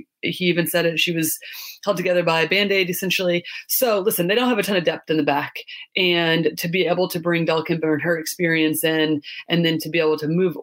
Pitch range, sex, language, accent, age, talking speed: 160-200 Hz, female, English, American, 30-49, 235 wpm